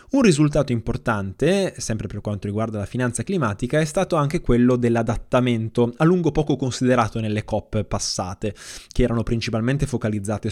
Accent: native